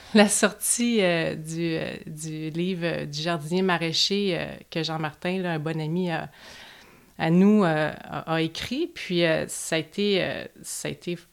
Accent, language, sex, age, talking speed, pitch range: Canadian, French, female, 30-49, 155 wpm, 160-185 Hz